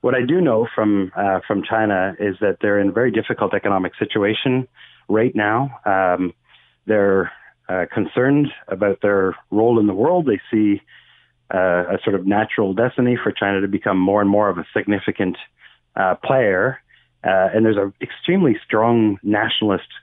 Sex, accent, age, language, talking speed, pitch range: male, American, 30-49, English, 170 wpm, 95-110 Hz